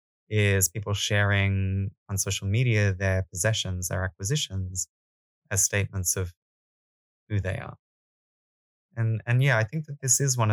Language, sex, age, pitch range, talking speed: Danish, male, 20-39, 95-105 Hz, 140 wpm